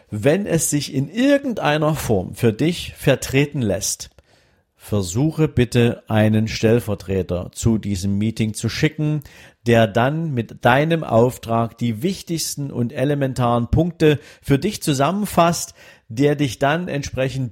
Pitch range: 110-145 Hz